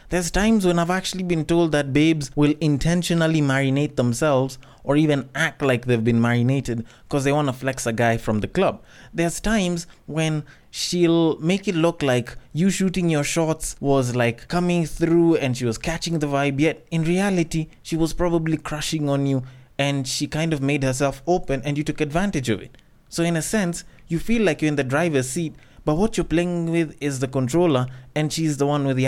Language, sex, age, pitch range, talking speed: English, male, 20-39, 130-175 Hz, 205 wpm